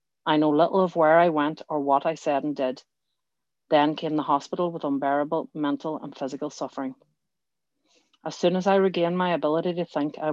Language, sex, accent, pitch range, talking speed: English, female, Irish, 145-165 Hz, 190 wpm